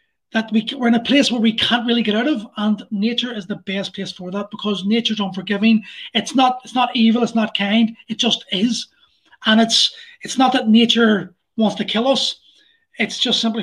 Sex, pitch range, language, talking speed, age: male, 205-235 Hz, English, 210 wpm, 30-49